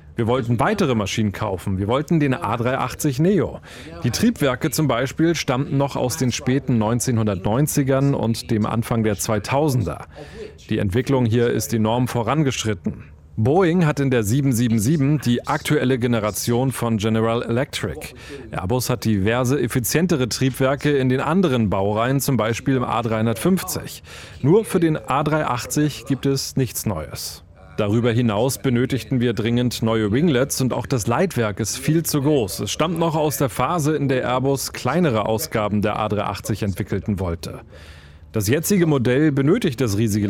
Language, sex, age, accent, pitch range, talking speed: German, male, 30-49, German, 110-145 Hz, 145 wpm